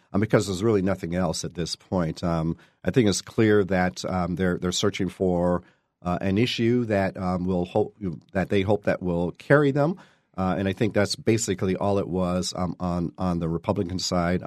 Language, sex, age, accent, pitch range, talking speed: English, male, 50-69, American, 90-115 Hz, 200 wpm